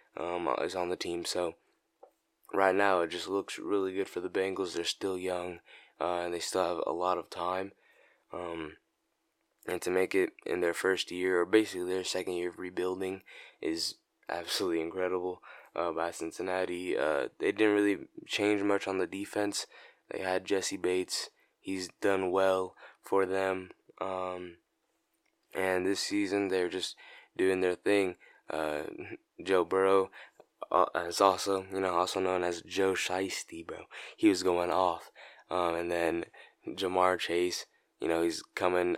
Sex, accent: male, American